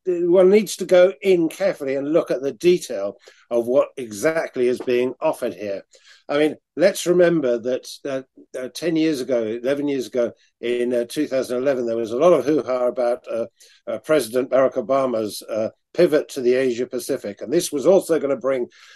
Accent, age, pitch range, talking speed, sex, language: British, 50-69, 125-160 Hz, 185 wpm, male, English